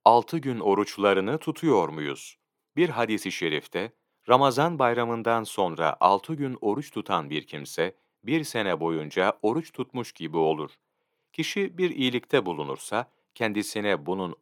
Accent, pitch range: native, 100-140 Hz